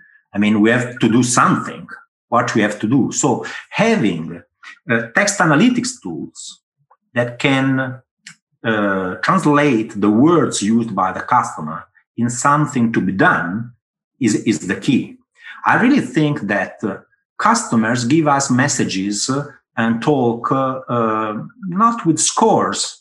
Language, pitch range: English, 120-170 Hz